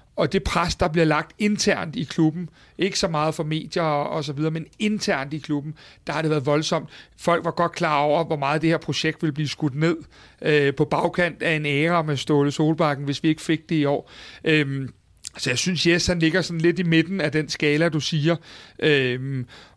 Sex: male